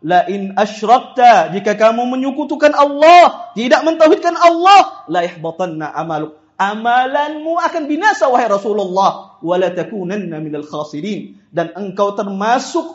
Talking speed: 110 wpm